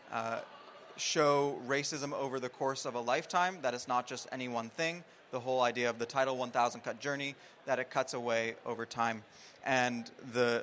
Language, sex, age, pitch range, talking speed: English, male, 20-39, 125-150 Hz, 185 wpm